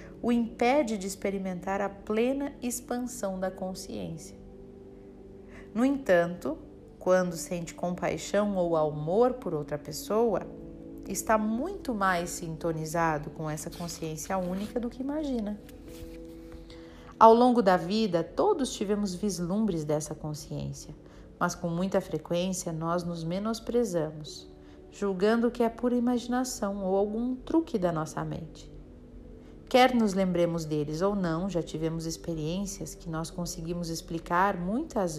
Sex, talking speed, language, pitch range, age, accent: female, 120 wpm, Portuguese, 165-220 Hz, 40-59, Brazilian